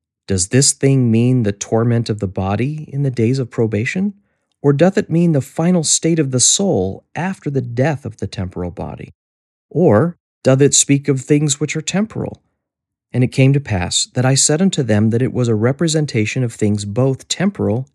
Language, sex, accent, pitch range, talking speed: English, male, American, 100-135 Hz, 195 wpm